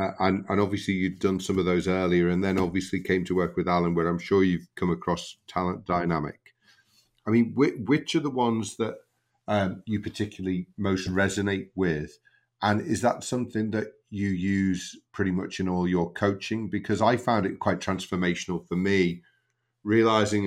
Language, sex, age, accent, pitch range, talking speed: English, male, 40-59, British, 85-105 Hz, 180 wpm